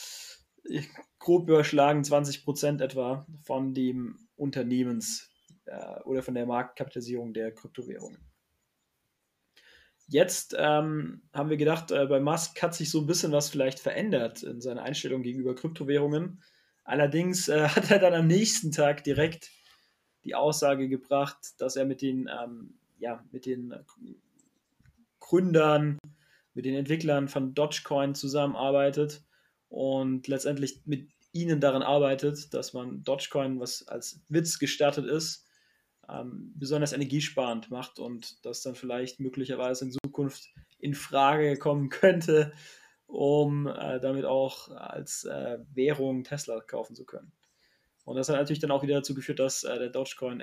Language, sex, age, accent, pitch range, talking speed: German, male, 20-39, German, 130-155 Hz, 135 wpm